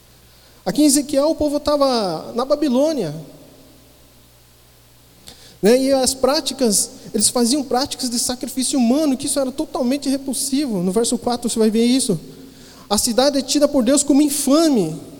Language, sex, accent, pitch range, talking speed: Portuguese, male, Brazilian, 190-265 Hz, 145 wpm